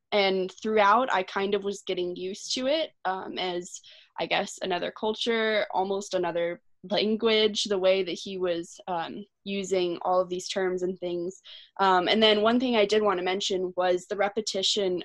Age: 20-39